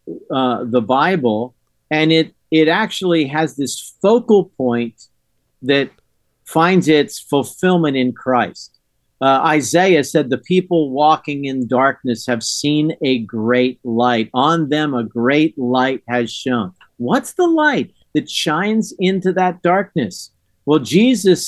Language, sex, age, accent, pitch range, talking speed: English, male, 50-69, American, 130-175 Hz, 130 wpm